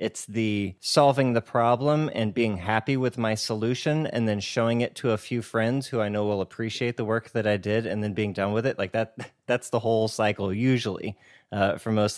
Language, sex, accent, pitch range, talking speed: English, male, American, 110-130 Hz, 220 wpm